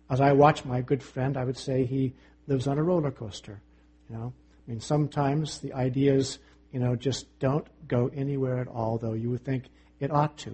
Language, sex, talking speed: English, male, 210 wpm